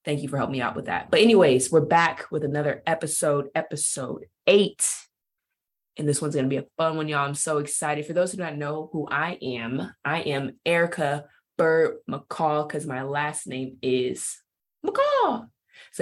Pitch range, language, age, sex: 130-160 Hz, English, 20-39, female